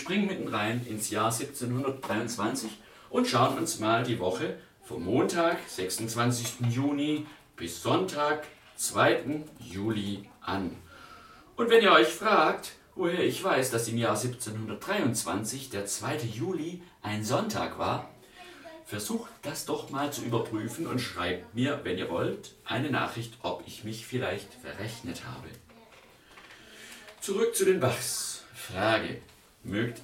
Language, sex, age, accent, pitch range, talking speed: German, male, 50-69, German, 110-150 Hz, 130 wpm